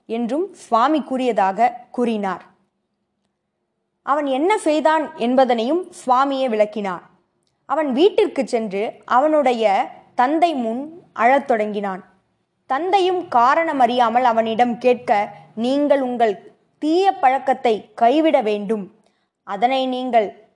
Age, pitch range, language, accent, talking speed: 20-39, 215-295 Hz, Tamil, native, 90 wpm